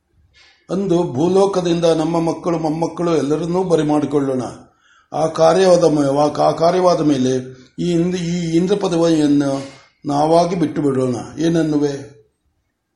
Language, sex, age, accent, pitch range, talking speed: Kannada, male, 60-79, native, 145-165 Hz, 90 wpm